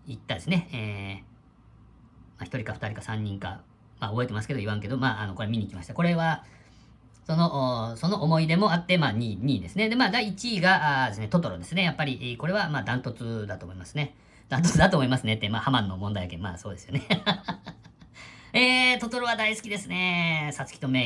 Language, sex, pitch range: Japanese, female, 105-140 Hz